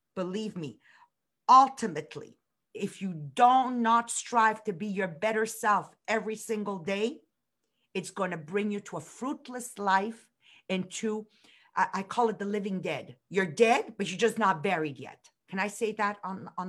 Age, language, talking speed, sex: 40-59, English, 170 wpm, female